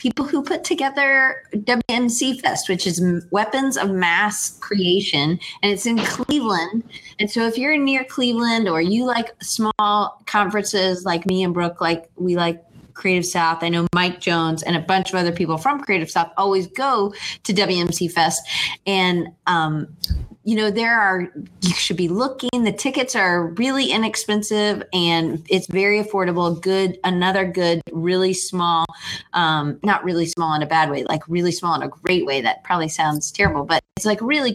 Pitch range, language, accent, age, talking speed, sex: 170-215 Hz, English, American, 20-39, 175 wpm, female